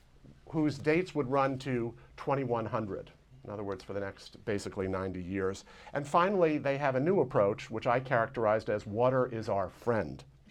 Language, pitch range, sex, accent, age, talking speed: English, 115-145 Hz, male, American, 50-69, 170 wpm